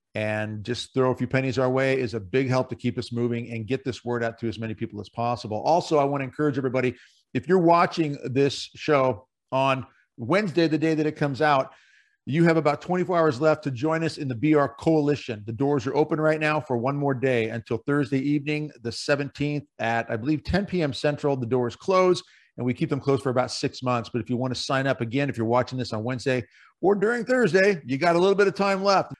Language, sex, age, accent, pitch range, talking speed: English, male, 50-69, American, 125-165 Hz, 240 wpm